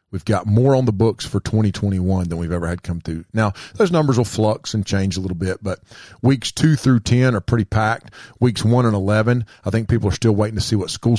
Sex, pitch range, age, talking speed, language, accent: male, 95-120 Hz, 40-59, 245 wpm, English, American